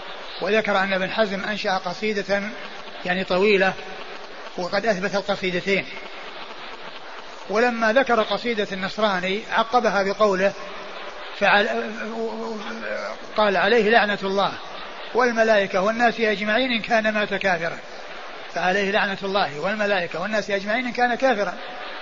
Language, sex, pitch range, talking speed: Arabic, male, 190-220 Hz, 100 wpm